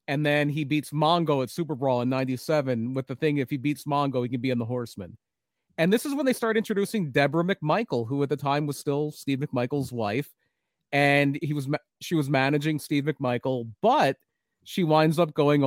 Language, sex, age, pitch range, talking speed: English, male, 40-59, 130-160 Hz, 205 wpm